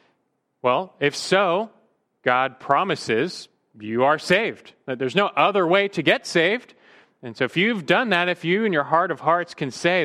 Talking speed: 185 wpm